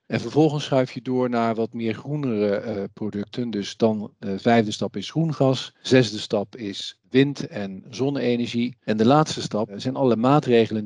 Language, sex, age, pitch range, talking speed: Dutch, male, 50-69, 110-135 Hz, 170 wpm